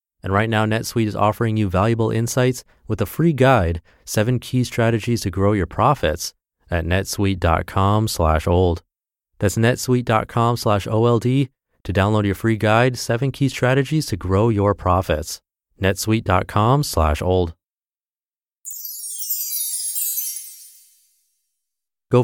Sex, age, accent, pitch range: male, 30-49, American, 90-115 Hz